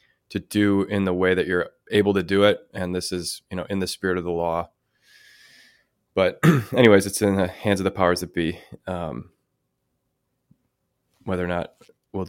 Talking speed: 185 wpm